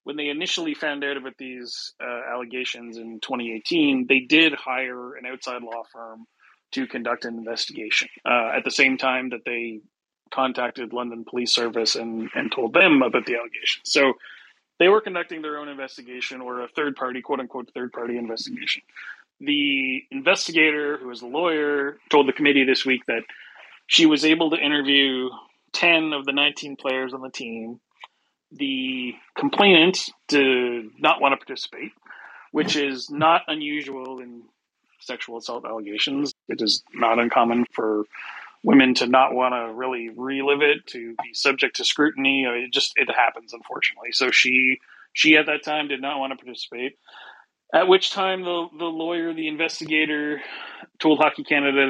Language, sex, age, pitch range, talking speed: English, male, 30-49, 125-155 Hz, 160 wpm